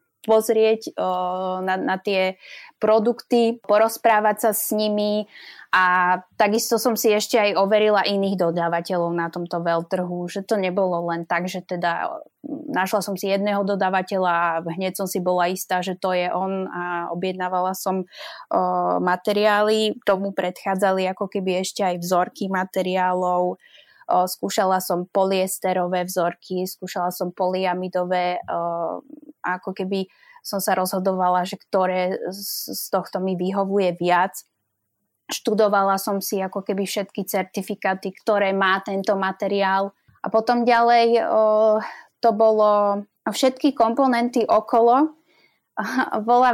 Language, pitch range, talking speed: Slovak, 185-220 Hz, 130 wpm